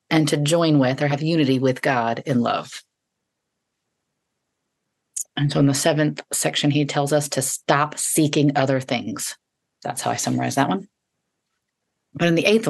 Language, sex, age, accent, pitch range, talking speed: English, female, 30-49, American, 130-150 Hz, 165 wpm